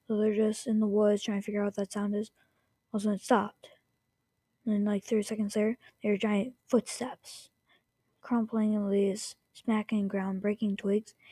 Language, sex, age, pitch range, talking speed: English, female, 20-39, 200-225 Hz, 180 wpm